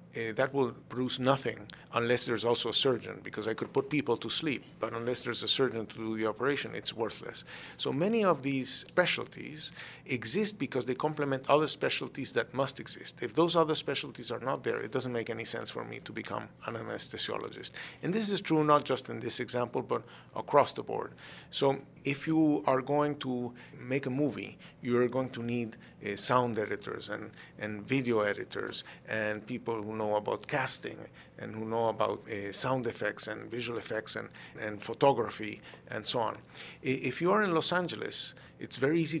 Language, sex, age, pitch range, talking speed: English, male, 50-69, 115-155 Hz, 190 wpm